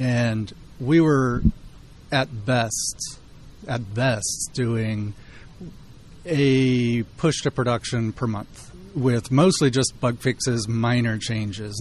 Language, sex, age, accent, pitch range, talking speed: English, male, 30-49, American, 115-135 Hz, 105 wpm